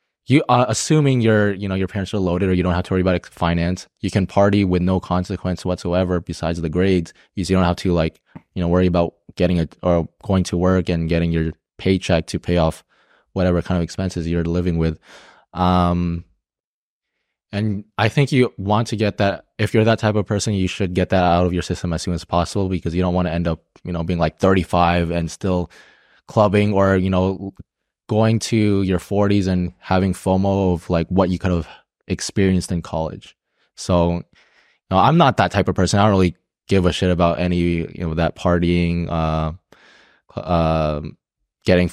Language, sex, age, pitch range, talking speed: English, male, 20-39, 85-95 Hz, 210 wpm